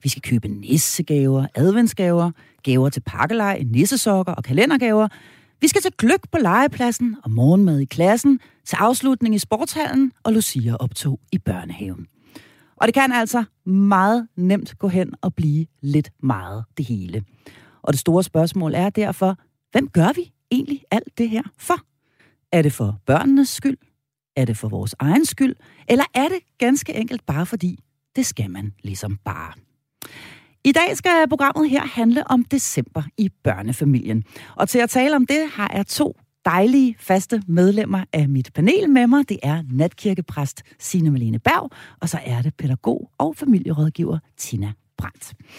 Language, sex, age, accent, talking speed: Danish, female, 40-59, native, 160 wpm